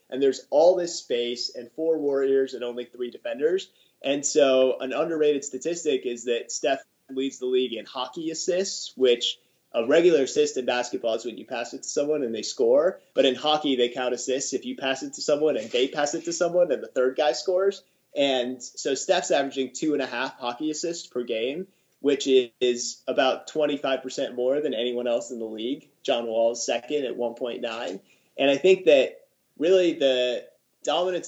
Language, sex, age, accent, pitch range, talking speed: English, male, 30-49, American, 125-160 Hz, 190 wpm